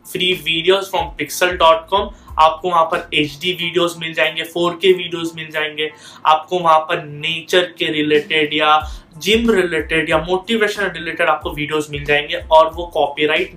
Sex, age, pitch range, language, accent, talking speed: male, 20-39, 155-185 Hz, Hindi, native, 65 wpm